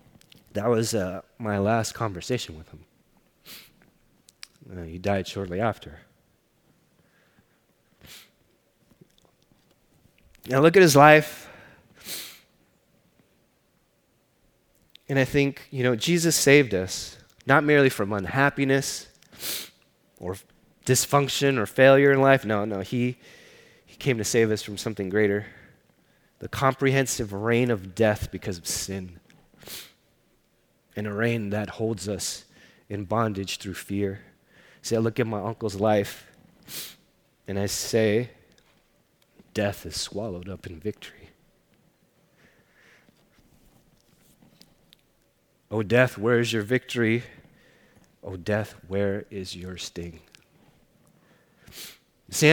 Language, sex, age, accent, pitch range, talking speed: English, male, 30-49, American, 100-135 Hz, 110 wpm